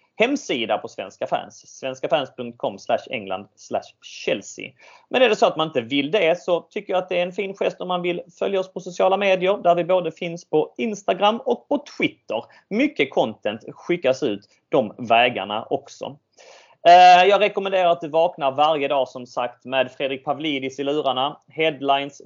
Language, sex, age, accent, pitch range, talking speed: Swedish, male, 30-49, native, 130-185 Hz, 175 wpm